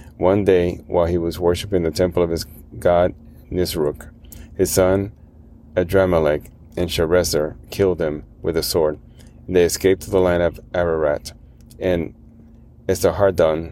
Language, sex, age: English, male, 30-49